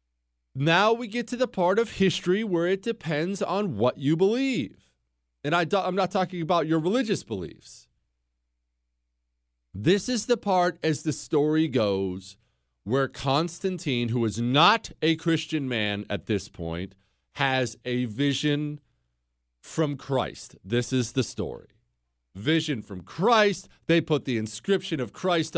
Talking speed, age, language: 145 wpm, 40-59, English